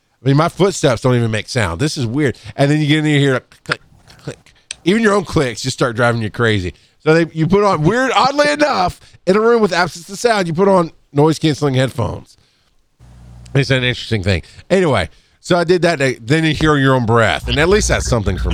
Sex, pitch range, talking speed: male, 110-155 Hz, 230 wpm